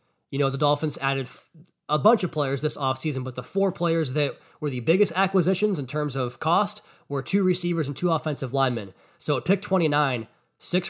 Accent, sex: American, male